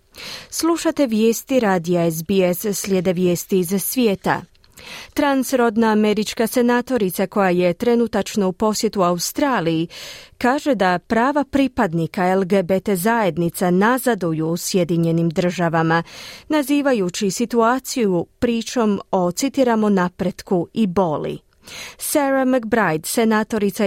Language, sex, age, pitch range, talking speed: Croatian, female, 30-49, 185-245 Hz, 95 wpm